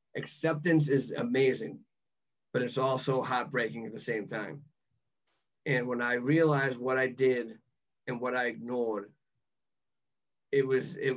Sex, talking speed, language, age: male, 135 wpm, English, 30-49